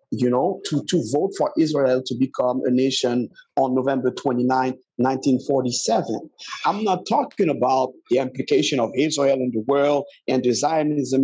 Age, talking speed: 50-69, 155 wpm